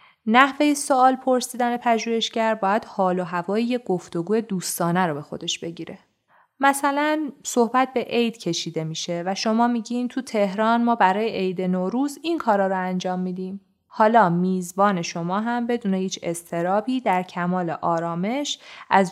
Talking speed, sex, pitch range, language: 140 wpm, female, 175-230 Hz, Persian